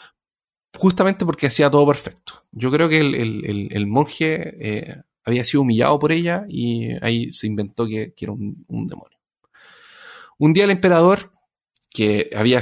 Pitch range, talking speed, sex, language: 120-175 Hz, 155 wpm, male, Spanish